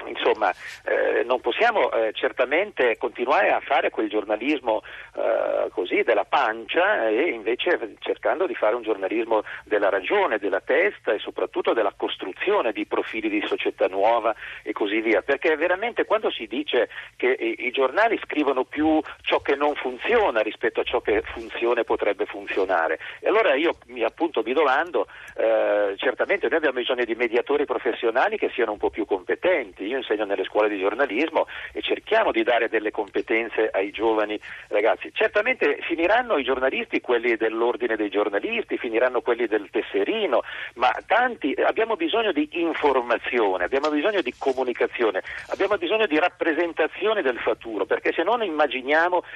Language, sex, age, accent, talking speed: Italian, male, 50-69, native, 160 wpm